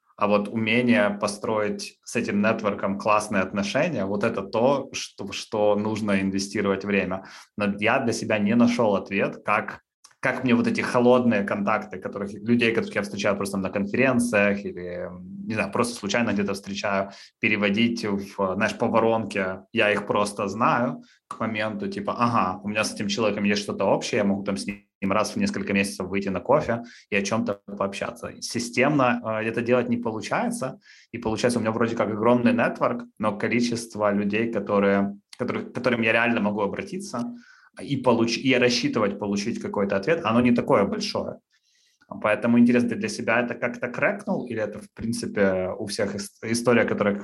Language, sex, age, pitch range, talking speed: Russian, male, 20-39, 100-120 Hz, 170 wpm